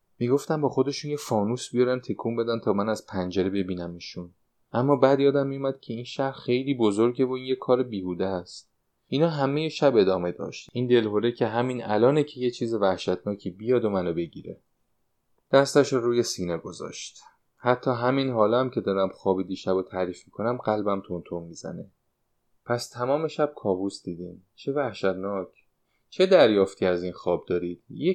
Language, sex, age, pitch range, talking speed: Persian, male, 30-49, 95-135 Hz, 160 wpm